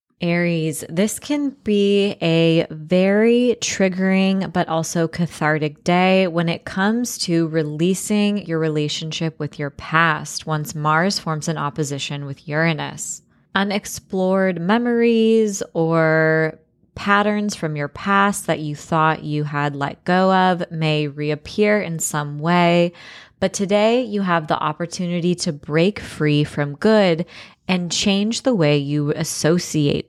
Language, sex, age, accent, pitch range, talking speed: English, female, 20-39, American, 155-185 Hz, 130 wpm